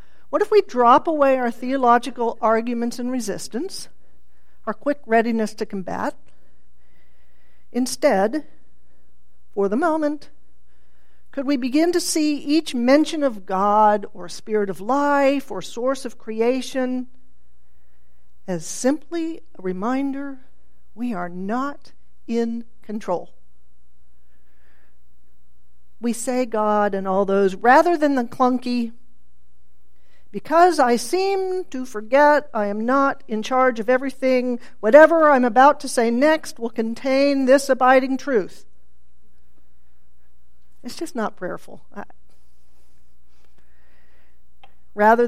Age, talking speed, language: 50-69, 110 wpm, English